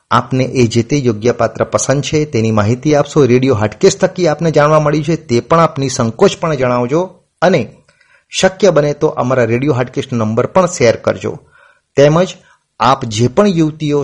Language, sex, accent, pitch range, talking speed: Gujarati, male, native, 115-150 Hz, 165 wpm